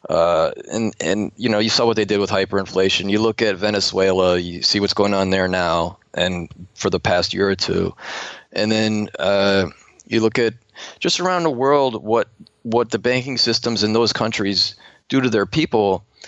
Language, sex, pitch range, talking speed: English, male, 100-120 Hz, 190 wpm